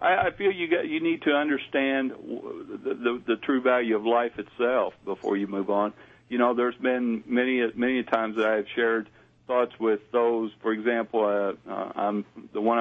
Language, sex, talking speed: English, male, 190 wpm